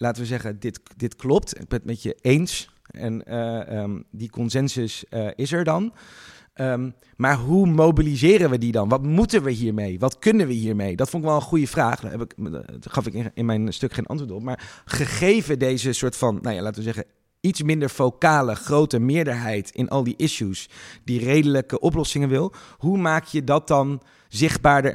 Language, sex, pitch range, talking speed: Dutch, male, 115-150 Hz, 190 wpm